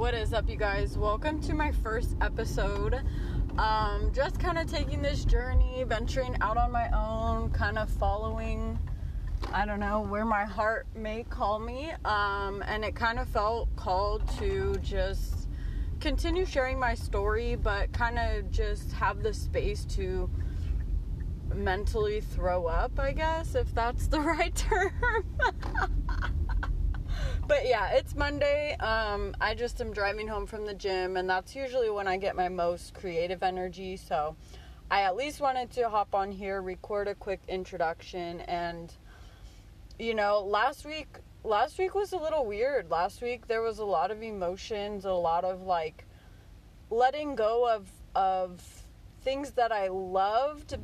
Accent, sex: American, female